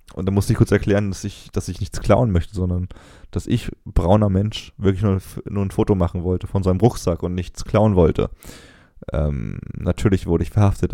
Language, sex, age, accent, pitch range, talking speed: German, male, 20-39, German, 90-115 Hz, 210 wpm